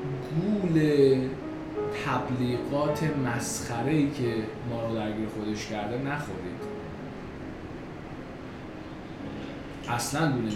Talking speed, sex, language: 75 wpm, male, Persian